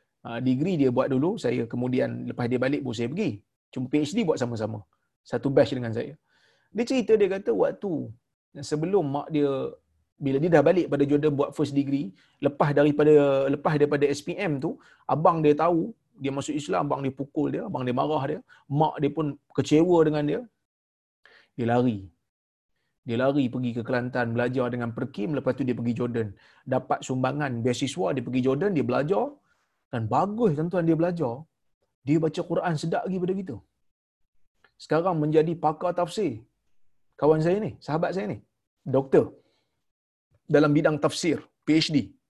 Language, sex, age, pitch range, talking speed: Malayalam, male, 30-49, 115-155 Hz, 165 wpm